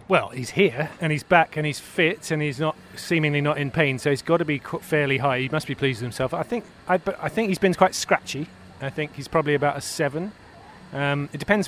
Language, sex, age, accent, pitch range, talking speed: English, male, 30-49, British, 130-160 Hz, 245 wpm